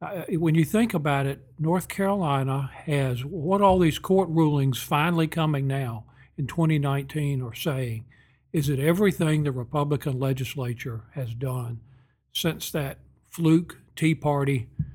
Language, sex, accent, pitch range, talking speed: English, male, American, 130-160 Hz, 135 wpm